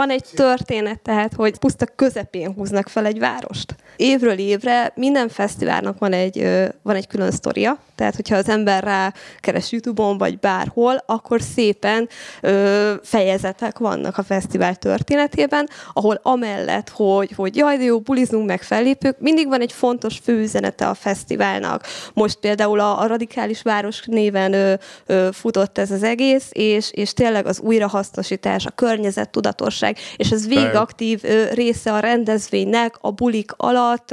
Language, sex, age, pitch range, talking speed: Hungarian, female, 20-39, 195-235 Hz, 140 wpm